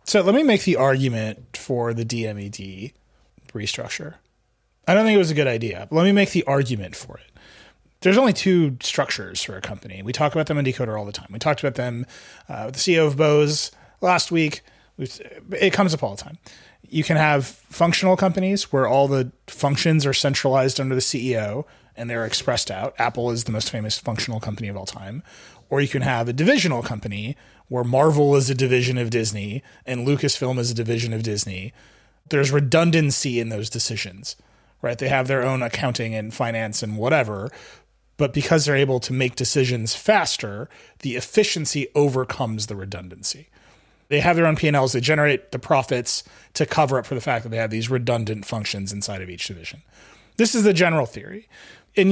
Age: 30-49